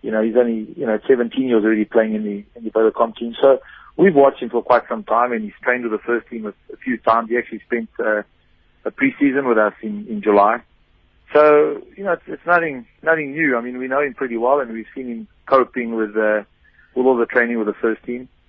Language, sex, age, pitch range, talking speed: English, male, 40-59, 110-140 Hz, 245 wpm